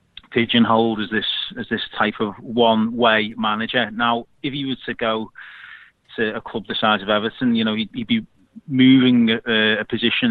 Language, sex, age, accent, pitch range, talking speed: English, male, 30-49, British, 110-130 Hz, 185 wpm